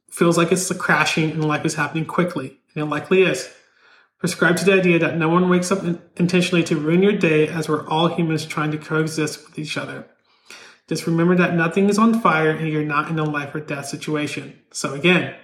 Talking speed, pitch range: 215 wpm, 155-180 Hz